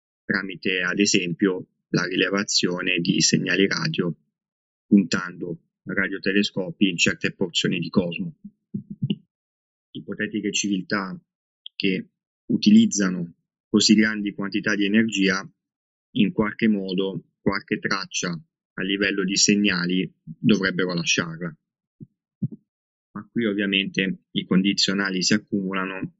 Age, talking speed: 20-39, 95 wpm